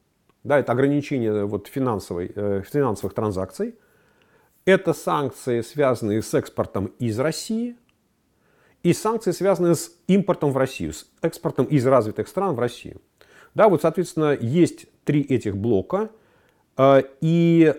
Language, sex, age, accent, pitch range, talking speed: Russian, male, 40-59, native, 120-180 Hz, 120 wpm